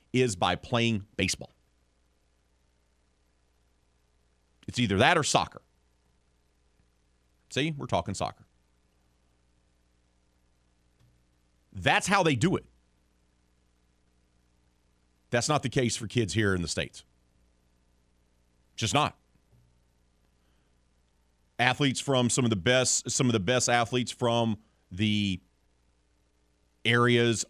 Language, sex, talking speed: English, male, 95 wpm